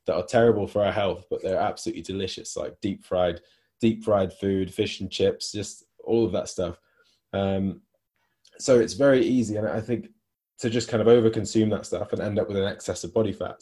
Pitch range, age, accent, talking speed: 95-110 Hz, 20-39, British, 210 wpm